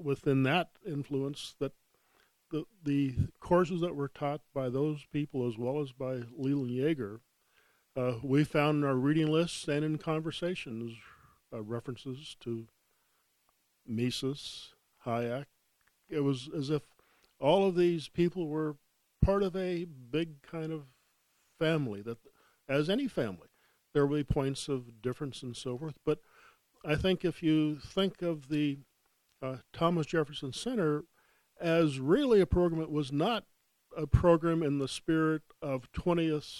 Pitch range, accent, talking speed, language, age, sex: 125-155 Hz, American, 145 wpm, English, 50-69, male